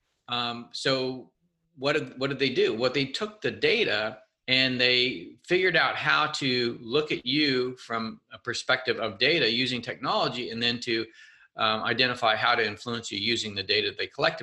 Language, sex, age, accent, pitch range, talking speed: English, male, 40-59, American, 115-150 Hz, 185 wpm